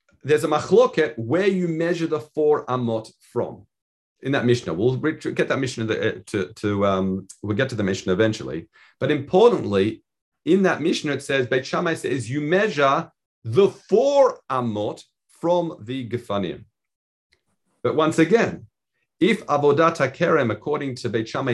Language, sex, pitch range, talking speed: English, male, 120-180 Hz, 150 wpm